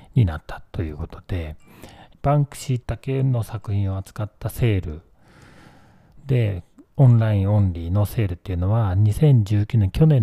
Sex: male